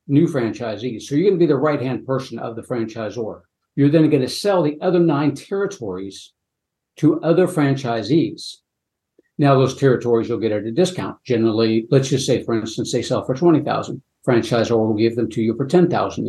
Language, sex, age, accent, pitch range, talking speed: English, male, 60-79, American, 115-150 Hz, 190 wpm